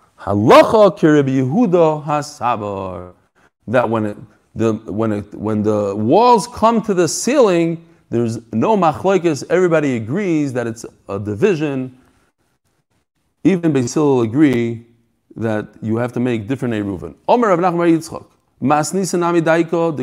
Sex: male